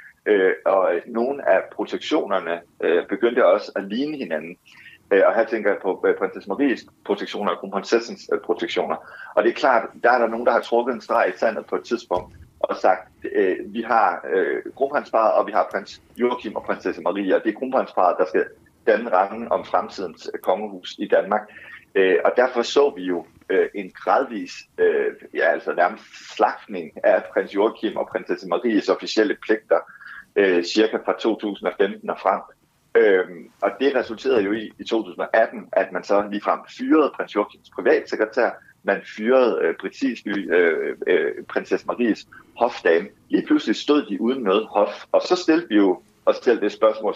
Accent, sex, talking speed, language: native, male, 175 wpm, Danish